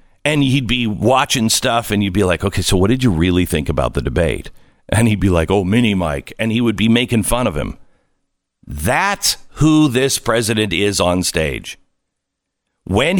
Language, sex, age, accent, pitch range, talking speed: English, male, 50-69, American, 110-160 Hz, 190 wpm